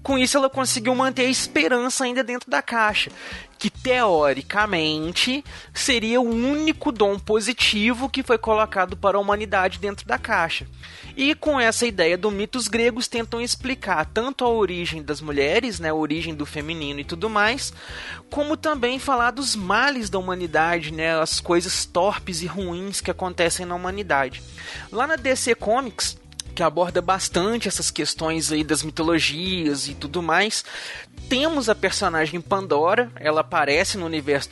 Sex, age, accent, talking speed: male, 30-49, Brazilian, 155 wpm